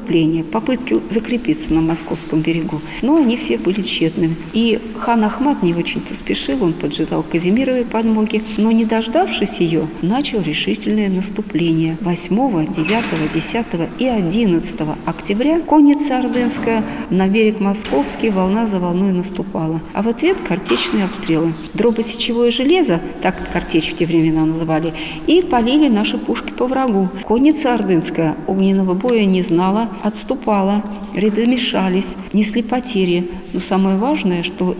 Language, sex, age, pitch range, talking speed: Russian, female, 40-59, 170-230 Hz, 130 wpm